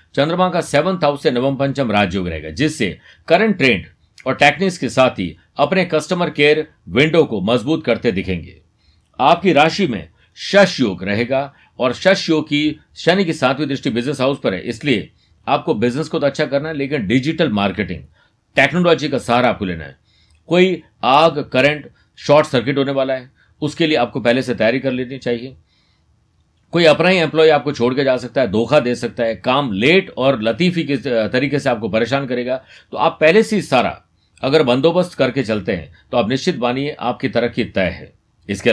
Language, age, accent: Hindi, 50-69, native